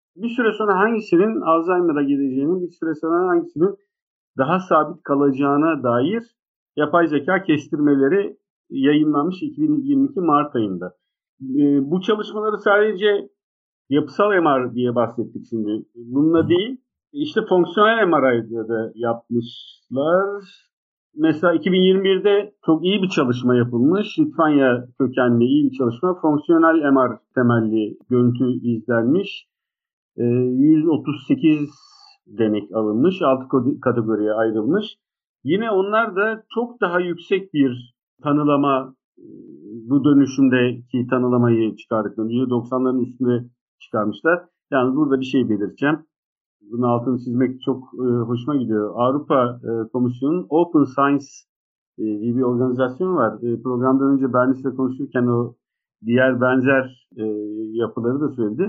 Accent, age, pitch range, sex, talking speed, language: native, 50-69, 125-185 Hz, male, 105 wpm, Turkish